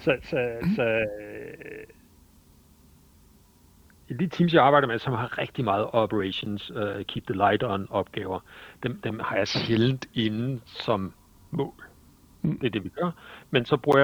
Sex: male